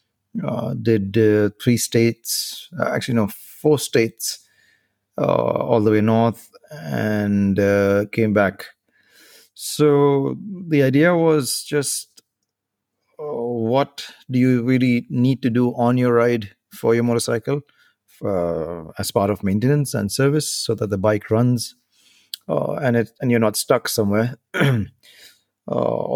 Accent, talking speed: Indian, 135 wpm